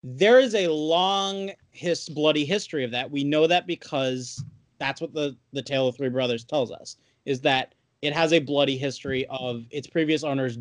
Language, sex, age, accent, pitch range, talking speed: English, male, 30-49, American, 130-175 Hz, 190 wpm